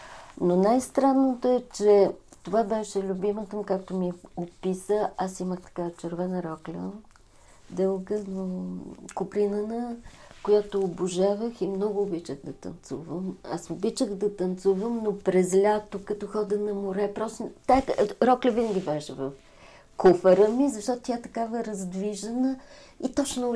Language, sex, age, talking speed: Bulgarian, female, 40-59, 130 wpm